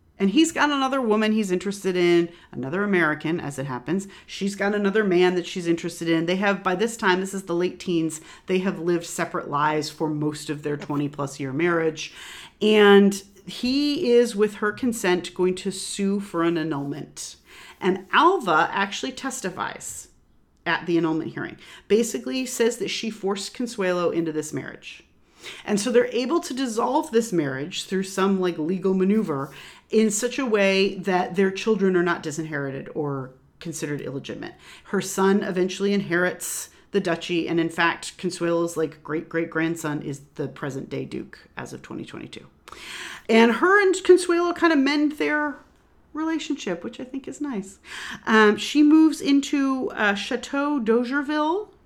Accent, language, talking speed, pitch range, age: American, English, 165 wpm, 165-230 Hz, 40-59